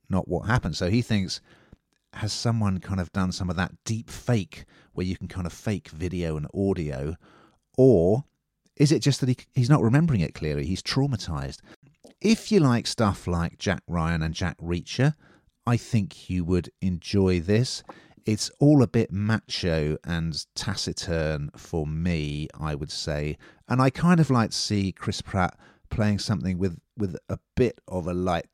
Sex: male